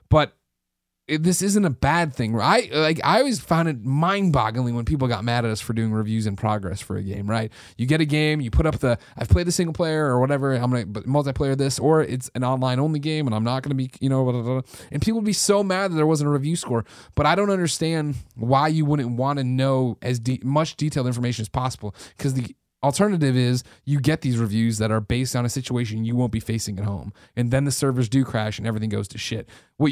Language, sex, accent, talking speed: English, male, American, 255 wpm